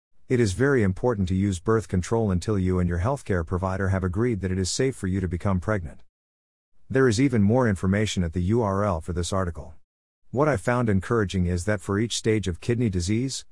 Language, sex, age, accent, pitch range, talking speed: English, male, 50-69, American, 90-115 Hz, 215 wpm